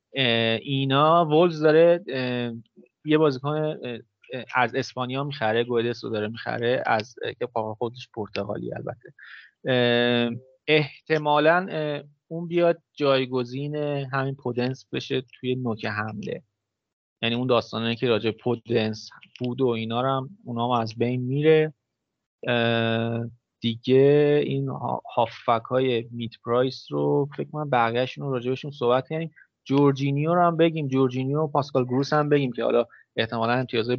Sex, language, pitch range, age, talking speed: male, Persian, 115-145 Hz, 30-49, 120 wpm